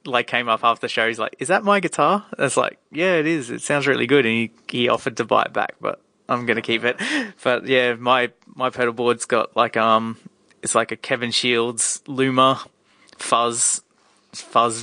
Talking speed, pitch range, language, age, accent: 210 wpm, 115-130 Hz, English, 20-39, Australian